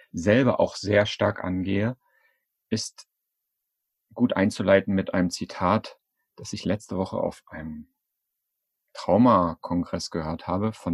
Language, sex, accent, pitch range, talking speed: German, male, German, 90-110 Hz, 115 wpm